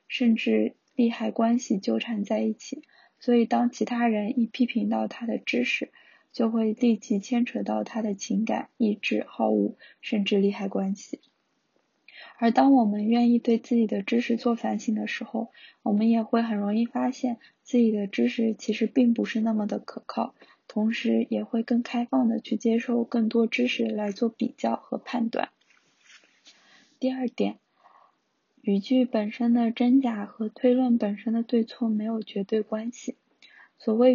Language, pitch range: Chinese, 220-245 Hz